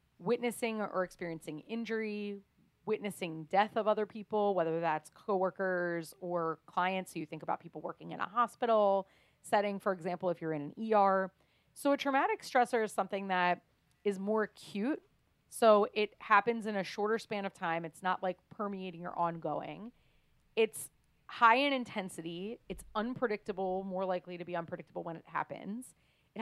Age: 30-49